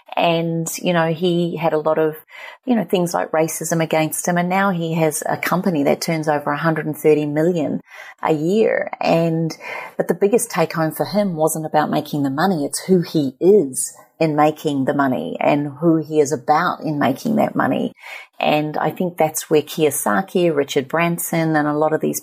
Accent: Australian